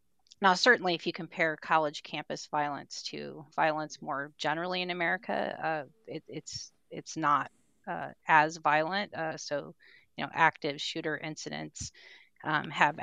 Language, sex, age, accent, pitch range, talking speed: English, female, 30-49, American, 155-175 Hz, 145 wpm